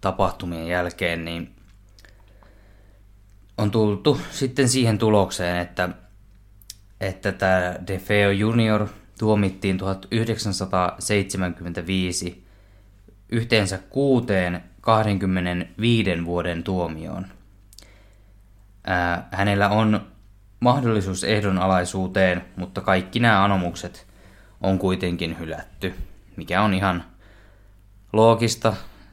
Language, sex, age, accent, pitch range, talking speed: Finnish, male, 20-39, native, 90-100 Hz, 75 wpm